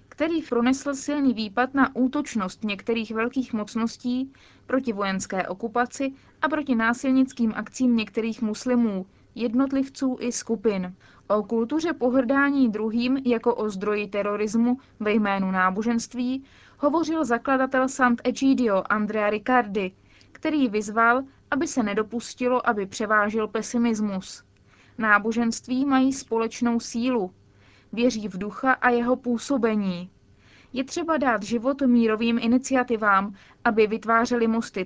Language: Czech